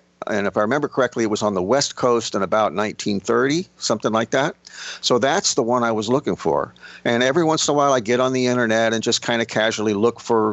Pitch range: 100-125 Hz